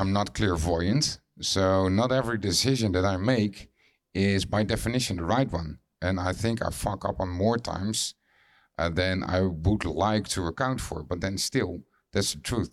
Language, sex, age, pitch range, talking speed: English, male, 50-69, 85-105 Hz, 185 wpm